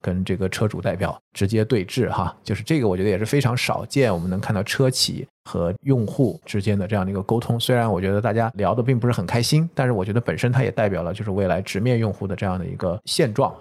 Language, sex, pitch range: Chinese, male, 95-120 Hz